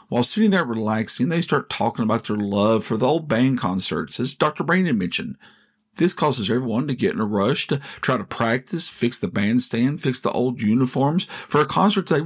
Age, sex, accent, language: 50-69, male, American, English